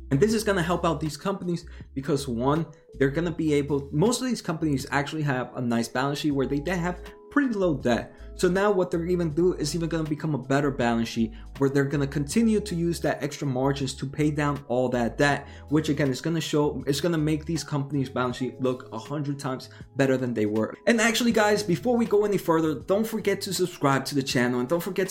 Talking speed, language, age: 245 wpm, English, 20-39